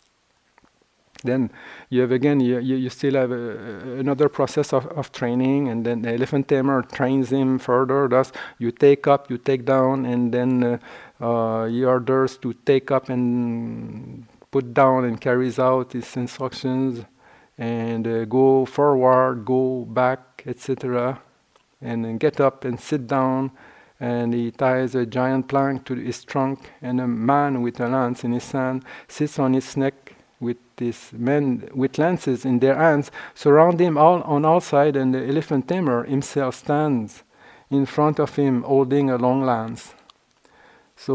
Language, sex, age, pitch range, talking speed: English, male, 50-69, 125-140 Hz, 160 wpm